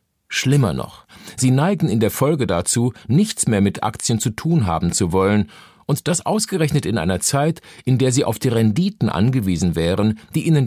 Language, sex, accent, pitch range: German, male, German, 95-140 Hz